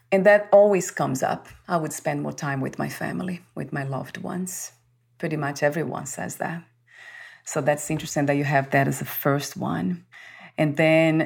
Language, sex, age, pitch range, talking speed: English, female, 30-49, 145-165 Hz, 185 wpm